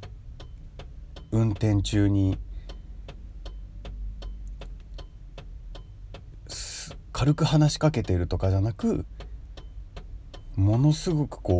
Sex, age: male, 40-59